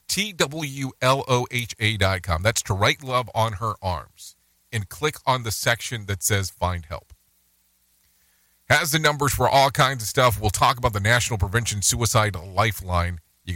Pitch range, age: 85-125 Hz, 40-59